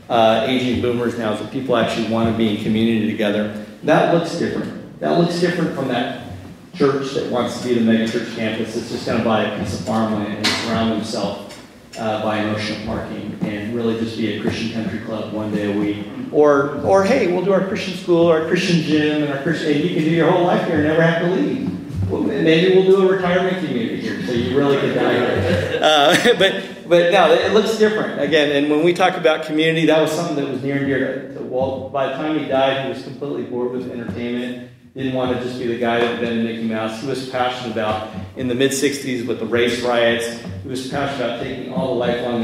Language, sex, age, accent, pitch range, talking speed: English, male, 40-59, American, 110-145 Hz, 235 wpm